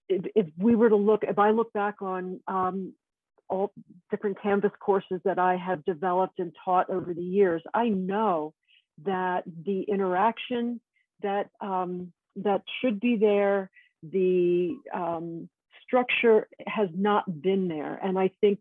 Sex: female